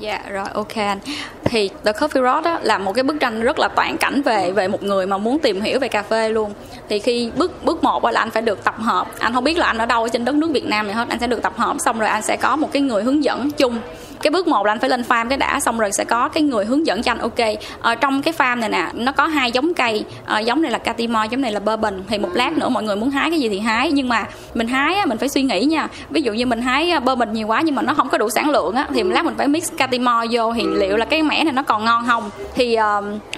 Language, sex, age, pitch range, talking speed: Vietnamese, female, 10-29, 220-290 Hz, 305 wpm